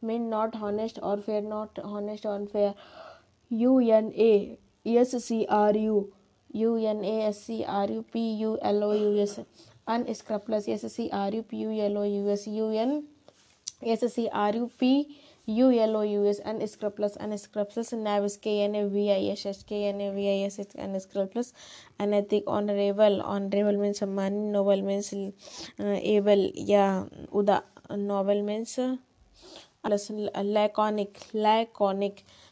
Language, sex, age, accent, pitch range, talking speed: Hindi, female, 20-39, native, 200-220 Hz, 135 wpm